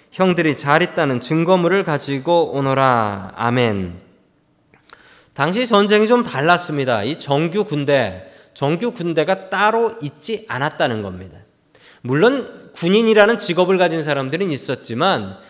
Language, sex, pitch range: Korean, male, 135-200 Hz